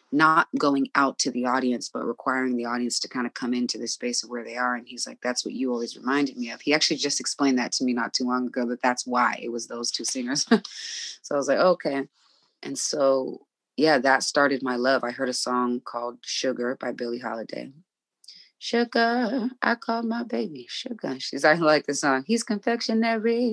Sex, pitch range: female, 125-150 Hz